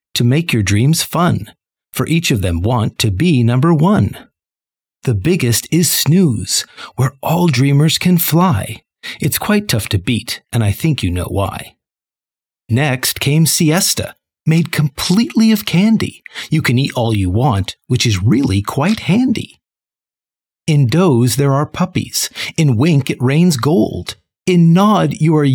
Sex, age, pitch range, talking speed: male, 50-69, 115-170 Hz, 155 wpm